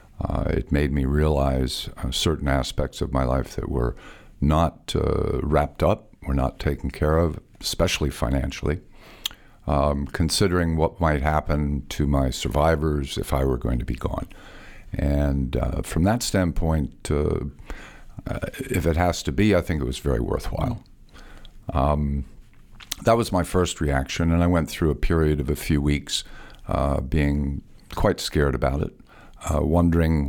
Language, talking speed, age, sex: English, 160 wpm, 50-69, male